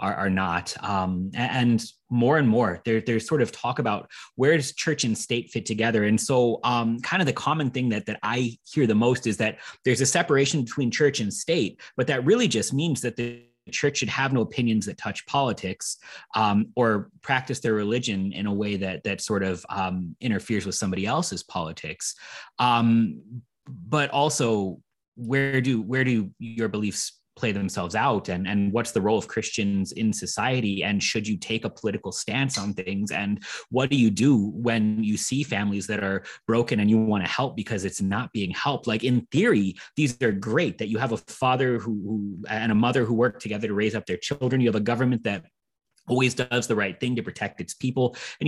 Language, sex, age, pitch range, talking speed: English, male, 30-49, 105-125 Hz, 205 wpm